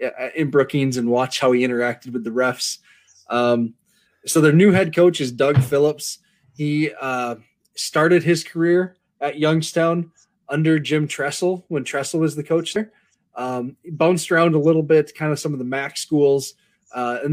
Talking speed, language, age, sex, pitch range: 175 wpm, English, 20-39, male, 130-170 Hz